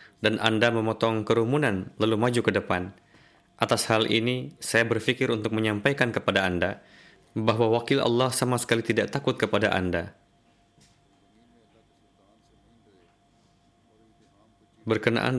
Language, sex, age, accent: Indonesian, male, 20-39, native